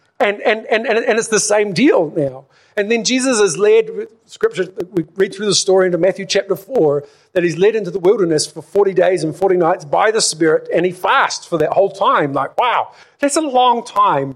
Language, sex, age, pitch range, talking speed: English, male, 50-69, 180-250 Hz, 215 wpm